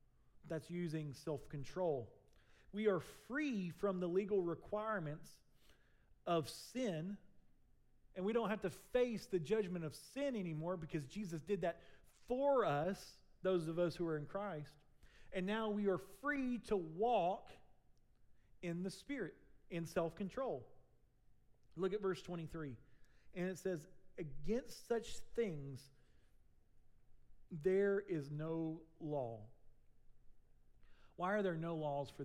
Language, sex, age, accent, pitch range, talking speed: English, male, 40-59, American, 140-195 Hz, 125 wpm